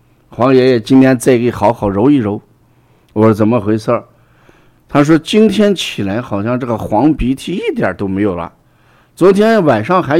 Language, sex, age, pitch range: Chinese, male, 50-69, 105-145 Hz